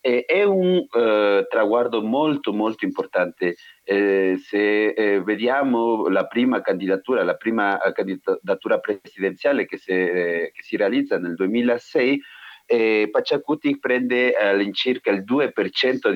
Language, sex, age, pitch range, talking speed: Italian, male, 40-59, 95-125 Hz, 125 wpm